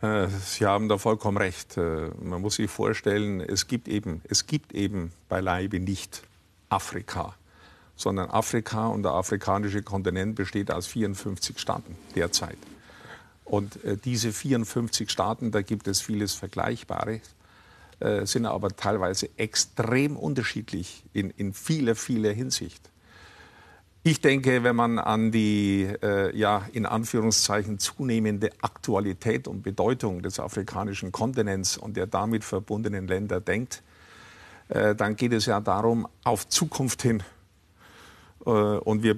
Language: German